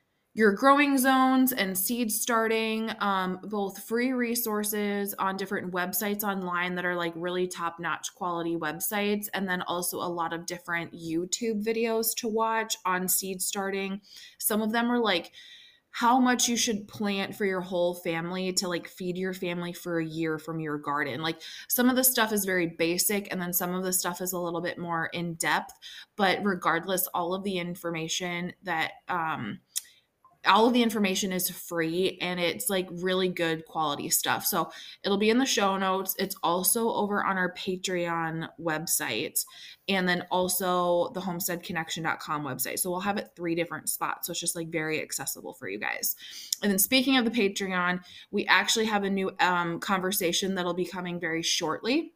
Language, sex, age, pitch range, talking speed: English, female, 20-39, 175-210 Hz, 180 wpm